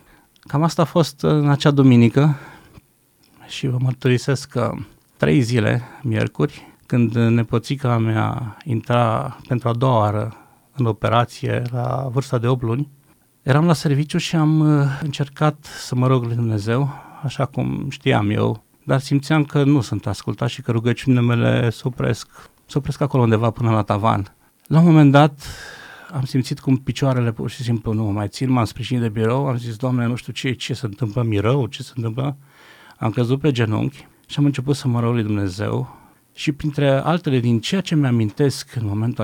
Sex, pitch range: male, 115-140 Hz